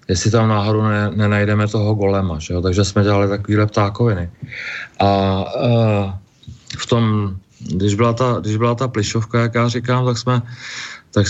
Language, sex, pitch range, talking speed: Czech, male, 105-120 Hz, 160 wpm